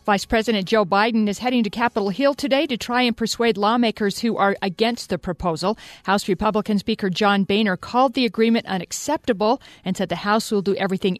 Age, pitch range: 50-69, 185-230 Hz